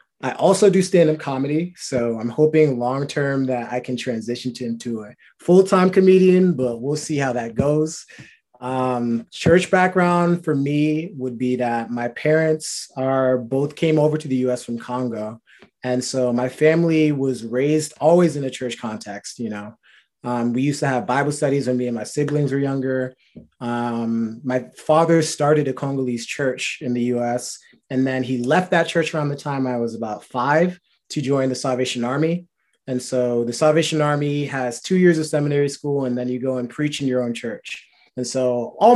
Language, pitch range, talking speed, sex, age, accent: English, 125-155 Hz, 190 wpm, male, 20-39, American